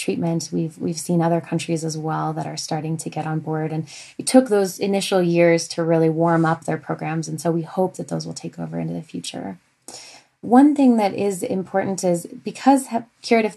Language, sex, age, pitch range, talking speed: English, female, 20-39, 165-200 Hz, 210 wpm